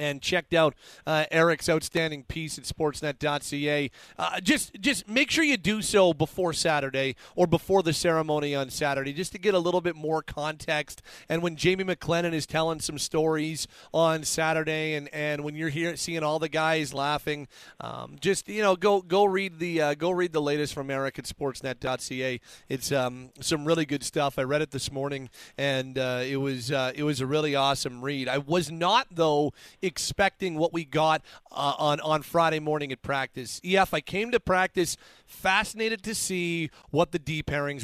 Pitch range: 140-175 Hz